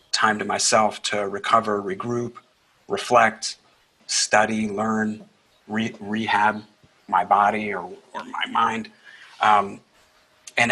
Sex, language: male, English